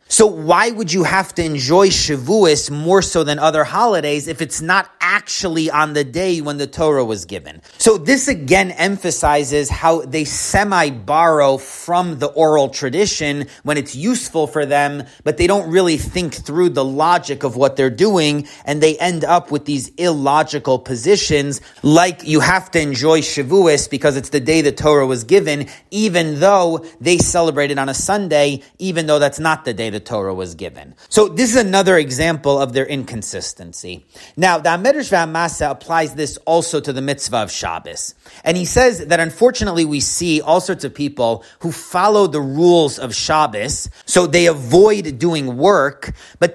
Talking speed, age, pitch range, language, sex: 175 wpm, 30-49, 145-180 Hz, English, male